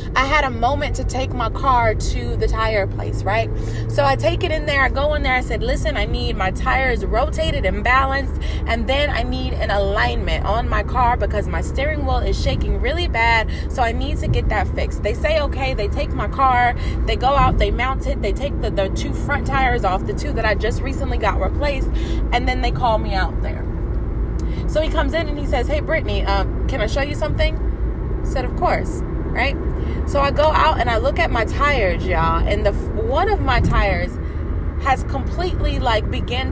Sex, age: female, 20-39